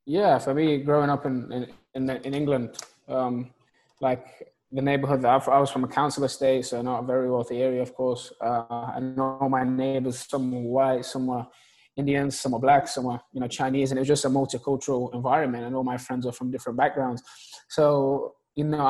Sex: male